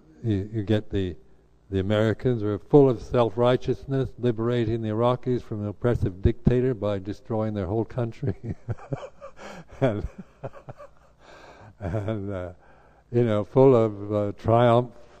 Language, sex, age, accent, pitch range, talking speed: English, male, 60-79, American, 95-115 Hz, 130 wpm